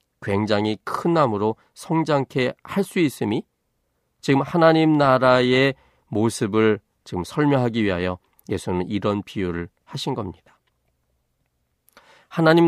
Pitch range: 95-140 Hz